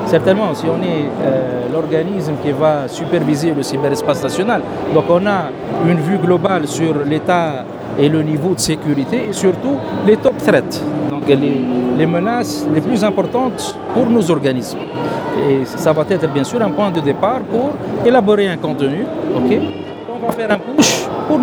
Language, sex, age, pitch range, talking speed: Arabic, male, 50-69, 155-200 Hz, 170 wpm